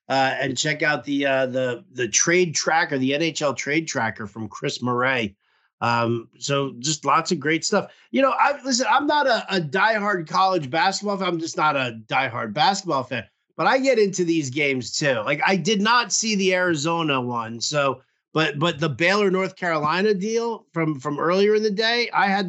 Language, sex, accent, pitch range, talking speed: English, male, American, 140-195 Hz, 195 wpm